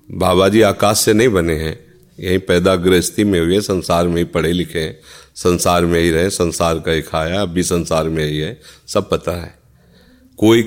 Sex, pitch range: male, 85-100 Hz